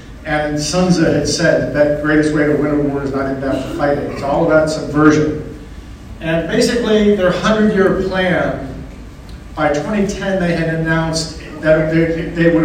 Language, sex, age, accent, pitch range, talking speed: English, male, 50-69, American, 145-170 Hz, 170 wpm